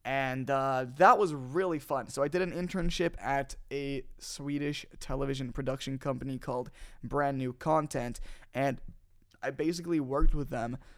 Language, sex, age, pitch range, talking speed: English, male, 20-39, 125-145 Hz, 150 wpm